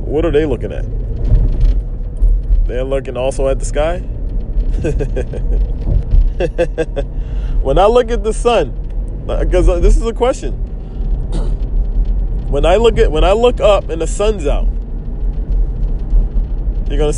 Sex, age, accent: male, 20-39, American